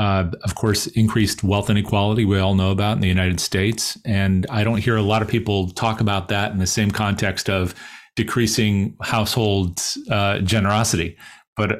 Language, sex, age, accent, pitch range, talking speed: English, male, 40-59, American, 95-115 Hz, 180 wpm